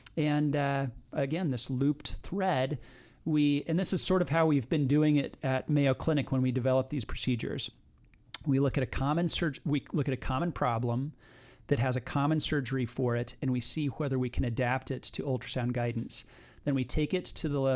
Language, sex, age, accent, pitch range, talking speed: English, male, 40-59, American, 125-140 Hz, 205 wpm